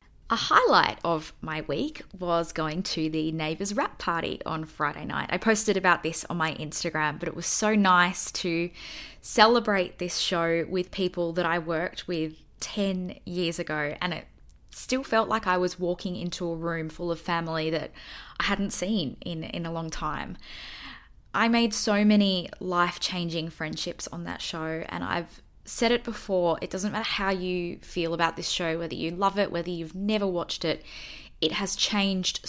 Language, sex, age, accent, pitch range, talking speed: English, female, 10-29, Australian, 165-200 Hz, 180 wpm